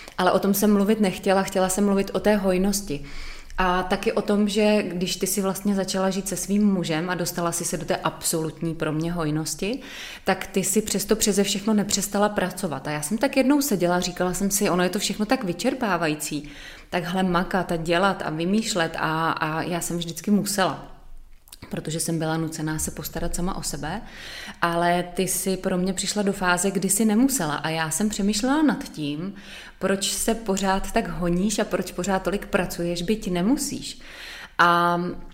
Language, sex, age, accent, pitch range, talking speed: Czech, female, 20-39, native, 165-195 Hz, 185 wpm